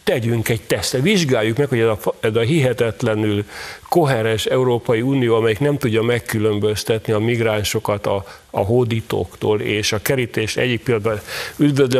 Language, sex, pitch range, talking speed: Hungarian, male, 110-135 Hz, 145 wpm